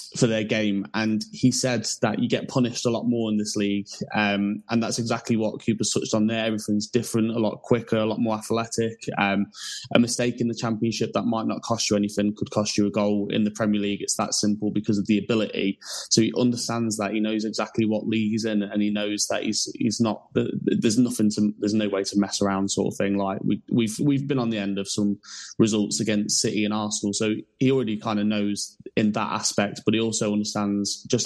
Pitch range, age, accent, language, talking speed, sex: 100-115 Hz, 20-39, British, English, 230 wpm, male